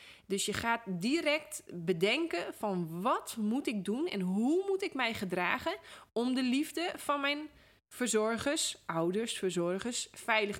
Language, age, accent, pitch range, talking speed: Dutch, 20-39, Dutch, 185-230 Hz, 140 wpm